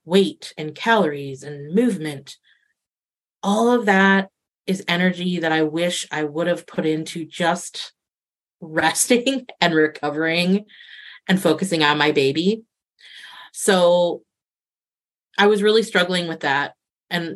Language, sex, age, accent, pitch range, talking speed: English, female, 30-49, American, 160-215 Hz, 120 wpm